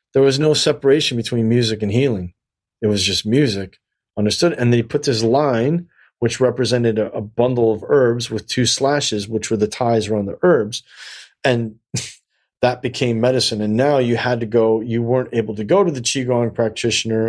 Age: 40-59